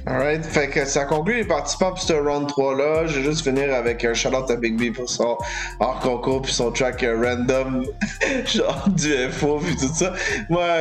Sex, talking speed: male, 200 wpm